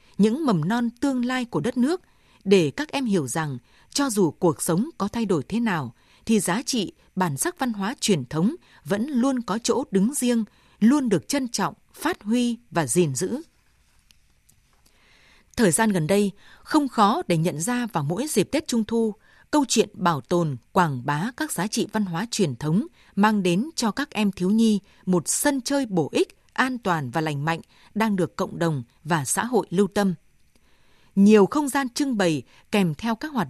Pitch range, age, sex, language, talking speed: 180-245 Hz, 20-39, female, Vietnamese, 195 wpm